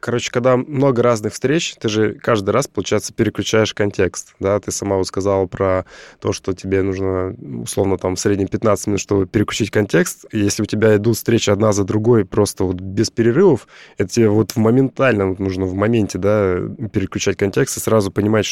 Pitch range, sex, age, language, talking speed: 95-110 Hz, male, 20-39, Russian, 190 wpm